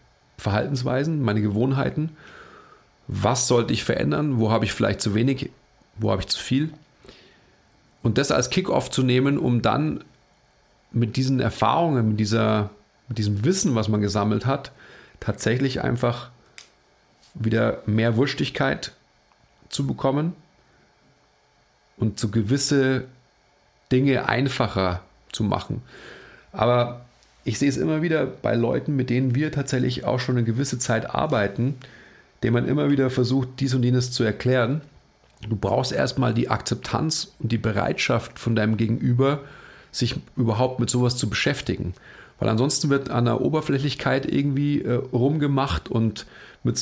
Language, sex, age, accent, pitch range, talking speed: German, male, 40-59, German, 115-140 Hz, 140 wpm